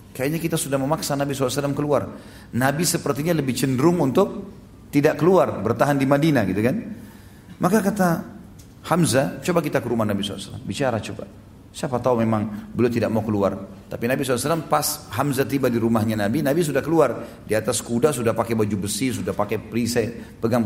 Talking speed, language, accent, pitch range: 175 wpm, English, Indonesian, 110-155 Hz